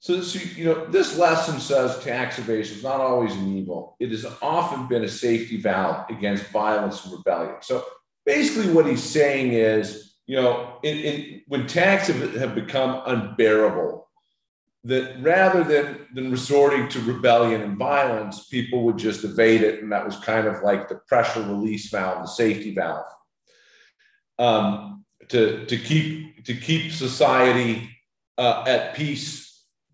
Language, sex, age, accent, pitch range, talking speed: English, male, 40-59, American, 110-155 Hz, 145 wpm